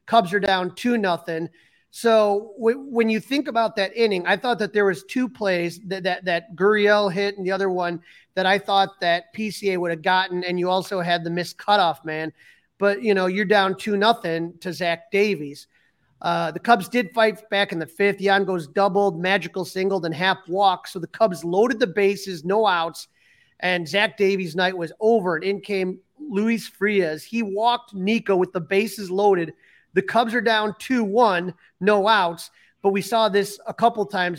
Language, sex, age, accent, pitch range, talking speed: English, male, 30-49, American, 175-210 Hz, 195 wpm